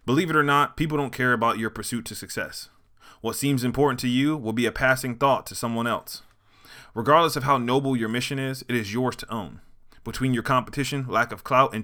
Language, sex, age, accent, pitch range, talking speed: English, male, 20-39, American, 110-135 Hz, 225 wpm